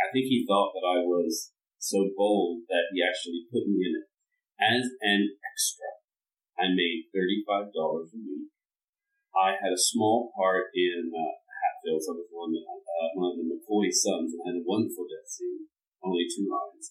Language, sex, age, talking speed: English, male, 30-49, 165 wpm